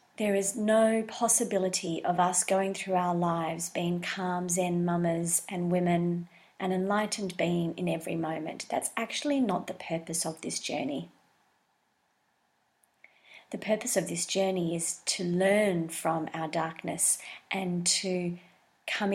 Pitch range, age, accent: 170-195 Hz, 30-49, Australian